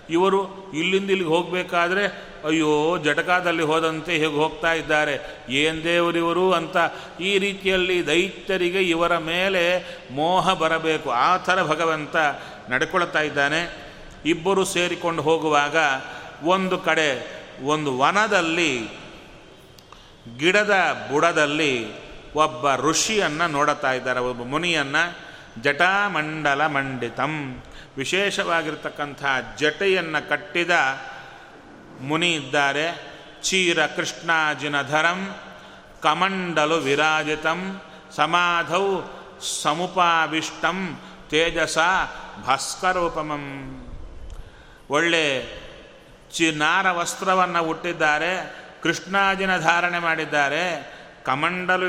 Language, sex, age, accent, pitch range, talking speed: Kannada, male, 30-49, native, 150-175 Hz, 75 wpm